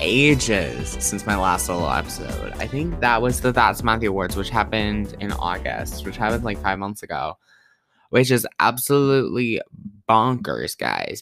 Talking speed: 155 wpm